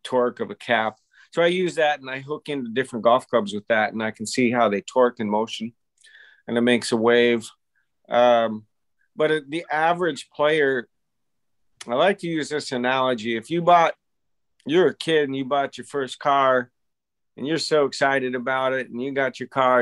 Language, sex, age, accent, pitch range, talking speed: English, male, 50-69, American, 125-150 Hz, 195 wpm